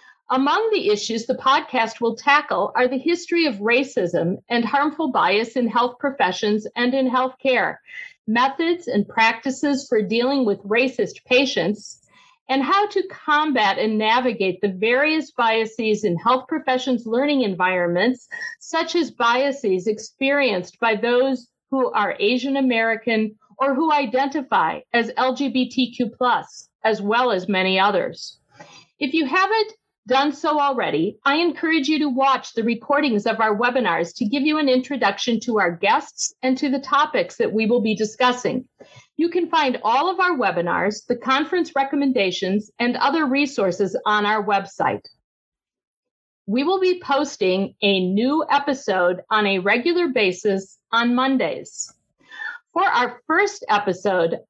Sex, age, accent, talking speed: female, 50-69, American, 140 wpm